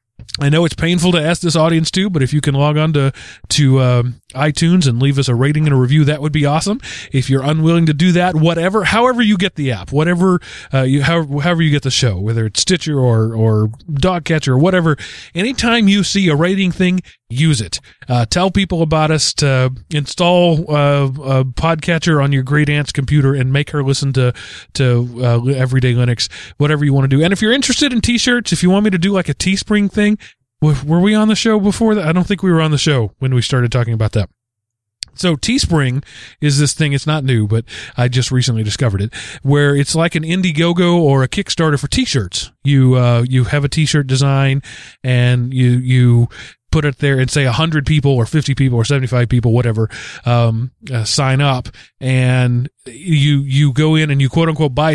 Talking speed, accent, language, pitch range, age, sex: 215 wpm, American, English, 125-170 Hz, 30-49, male